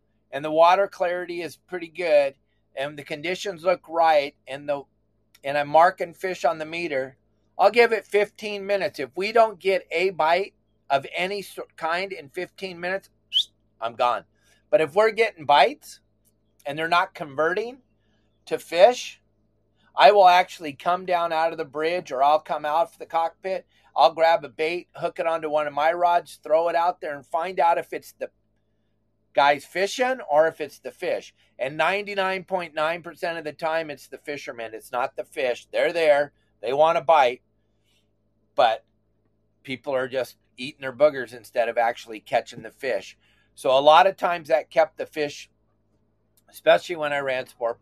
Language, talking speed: English, 175 wpm